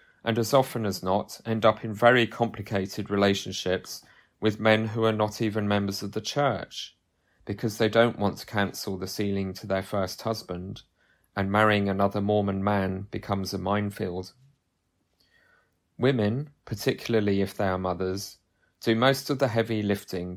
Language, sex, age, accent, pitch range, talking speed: English, male, 30-49, British, 95-110 Hz, 155 wpm